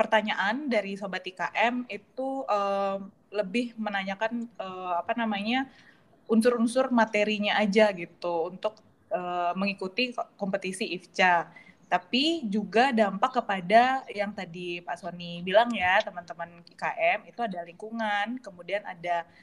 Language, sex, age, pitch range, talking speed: Indonesian, female, 20-39, 190-230 Hz, 115 wpm